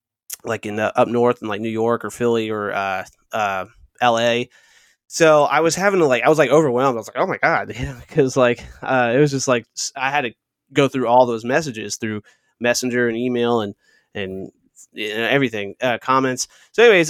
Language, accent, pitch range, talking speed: English, American, 115-150 Hz, 205 wpm